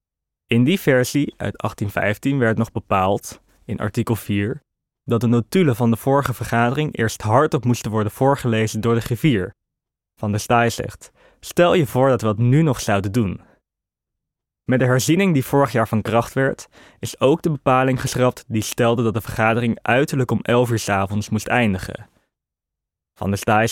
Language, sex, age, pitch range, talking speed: Dutch, male, 20-39, 110-130 Hz, 175 wpm